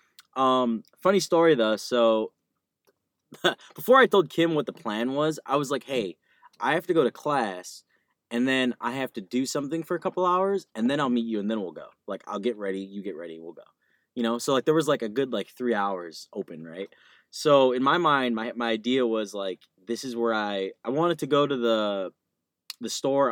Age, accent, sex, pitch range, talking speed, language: 20-39, American, male, 110-145 Hz, 225 wpm, English